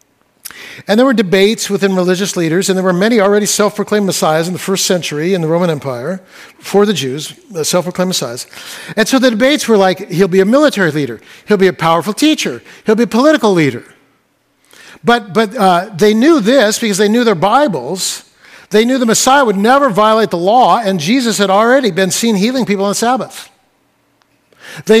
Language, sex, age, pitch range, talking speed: English, male, 60-79, 190-245 Hz, 195 wpm